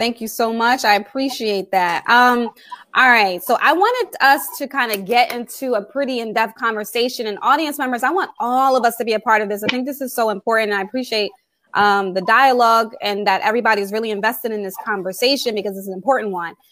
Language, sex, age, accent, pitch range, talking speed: English, female, 20-39, American, 210-260 Hz, 225 wpm